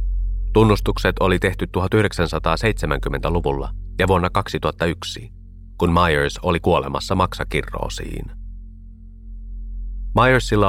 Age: 30-49